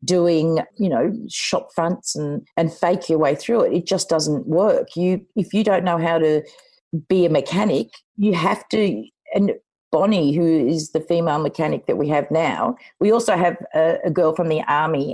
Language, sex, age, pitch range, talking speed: English, female, 50-69, 160-190 Hz, 195 wpm